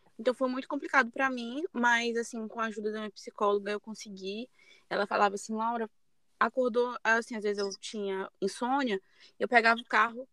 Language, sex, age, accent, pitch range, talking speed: Portuguese, female, 20-39, Brazilian, 210-245 Hz, 180 wpm